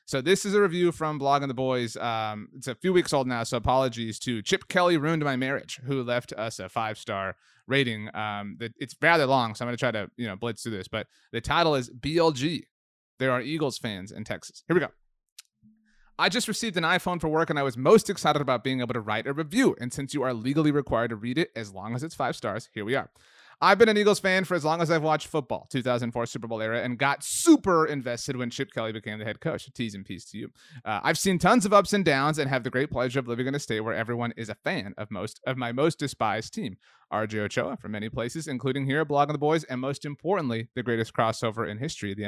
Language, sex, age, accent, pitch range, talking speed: English, male, 30-49, American, 115-160 Hz, 255 wpm